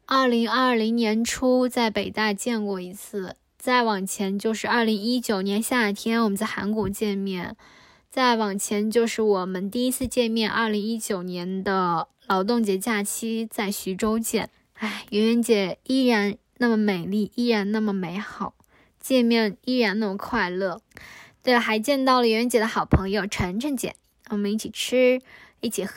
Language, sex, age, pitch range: English, female, 10-29, 200-245 Hz